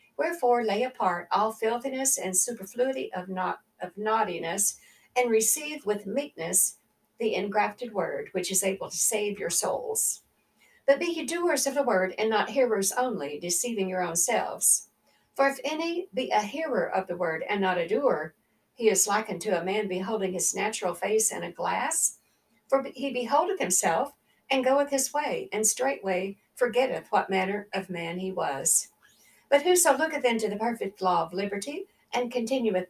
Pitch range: 190-265 Hz